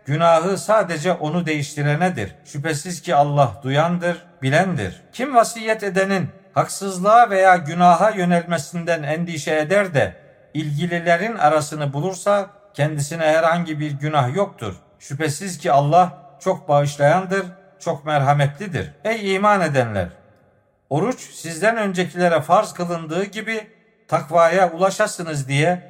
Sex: male